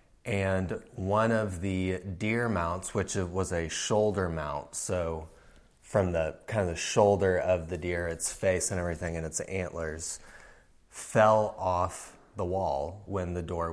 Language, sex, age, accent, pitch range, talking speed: English, male, 30-49, American, 85-100 Hz, 155 wpm